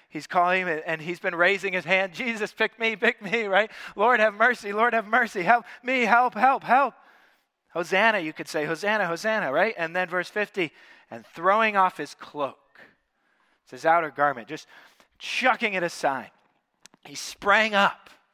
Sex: male